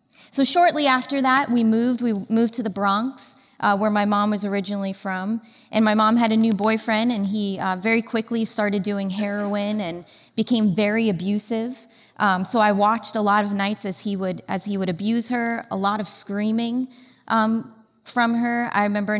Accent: American